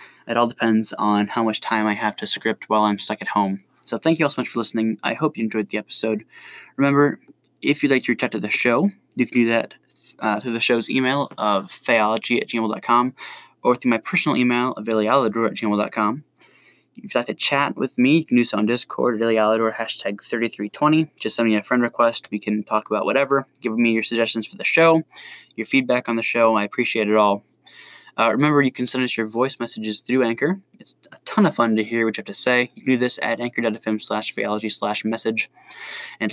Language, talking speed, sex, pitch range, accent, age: English, 230 wpm, male, 110-130 Hz, American, 10-29